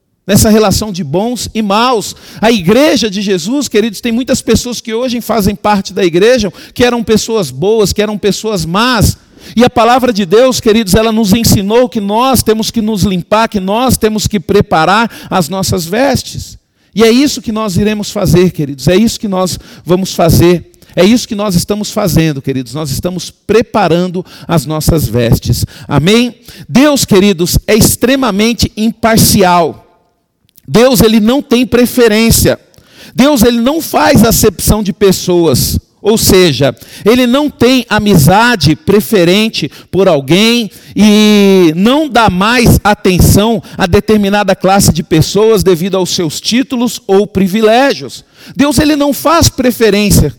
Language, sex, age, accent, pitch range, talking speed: Portuguese, male, 50-69, Brazilian, 180-235 Hz, 145 wpm